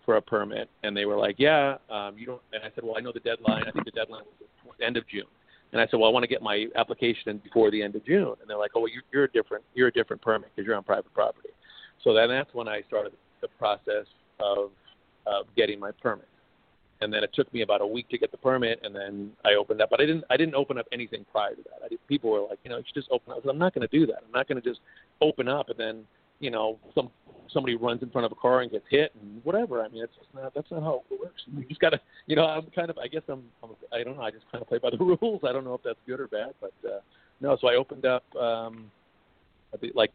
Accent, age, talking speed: American, 40-59, 280 wpm